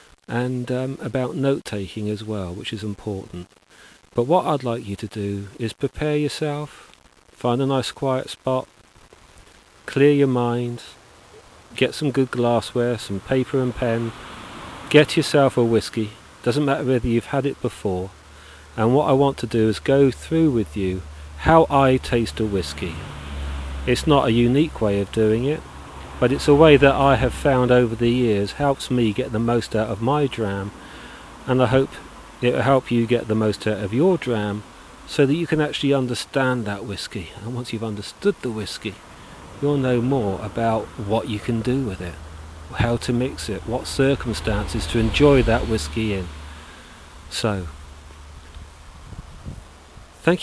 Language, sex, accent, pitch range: English, male, British, 100-135 Hz